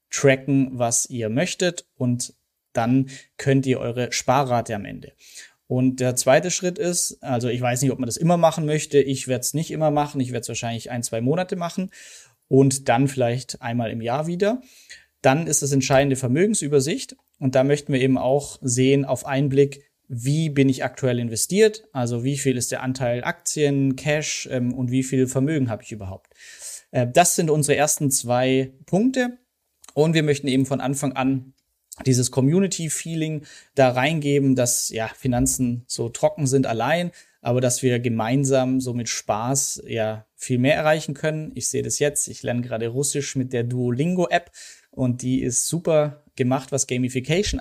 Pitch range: 125-150 Hz